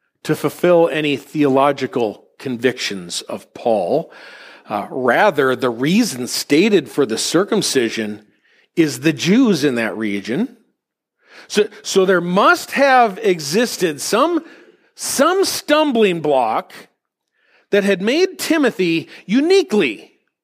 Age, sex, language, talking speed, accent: 40-59, male, English, 105 wpm, American